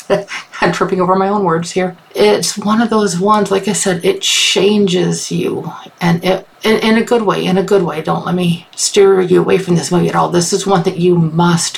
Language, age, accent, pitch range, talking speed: English, 50-69, American, 170-195 Hz, 235 wpm